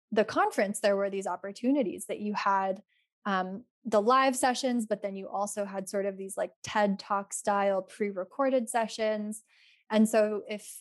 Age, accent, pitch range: 10-29, American, 195-230 Hz